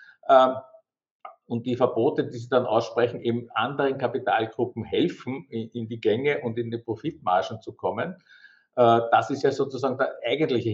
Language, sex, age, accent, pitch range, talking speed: German, male, 50-69, Austrian, 115-160 Hz, 145 wpm